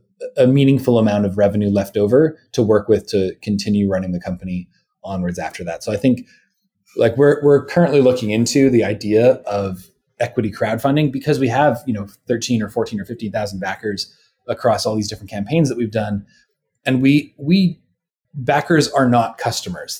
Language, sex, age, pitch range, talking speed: English, male, 30-49, 110-145 Hz, 175 wpm